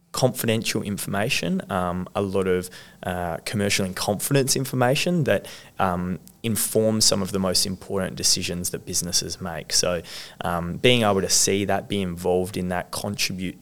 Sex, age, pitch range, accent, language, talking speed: male, 20-39, 90-110 Hz, Australian, English, 155 wpm